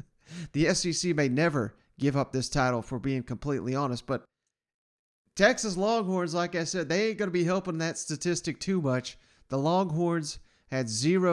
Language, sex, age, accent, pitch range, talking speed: English, male, 40-59, American, 125-165 Hz, 170 wpm